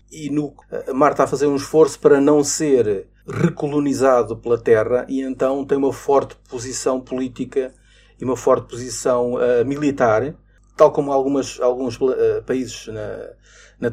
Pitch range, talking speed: 120-160 Hz, 150 wpm